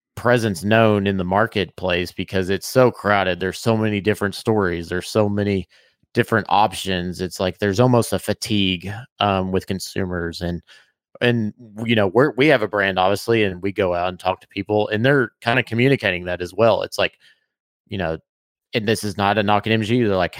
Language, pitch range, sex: English, 95-115 Hz, male